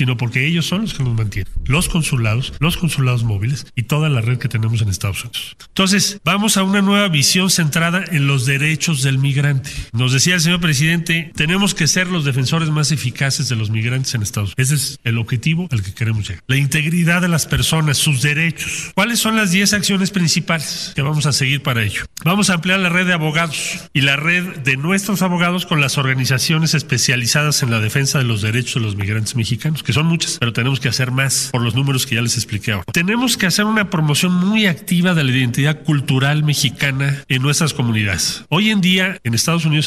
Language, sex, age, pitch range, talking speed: Spanish, male, 40-59, 130-175 Hz, 215 wpm